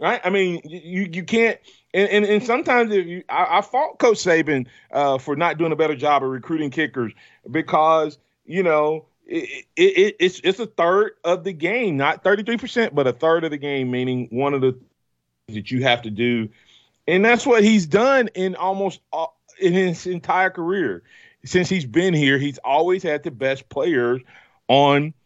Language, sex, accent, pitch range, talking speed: English, male, American, 125-180 Hz, 190 wpm